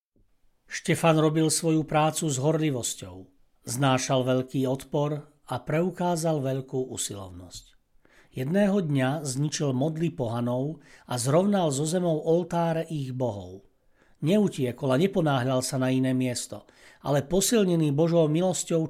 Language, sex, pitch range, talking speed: Slovak, male, 130-165 Hz, 115 wpm